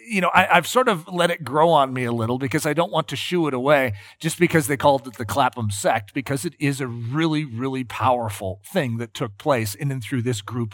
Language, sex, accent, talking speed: English, male, American, 245 wpm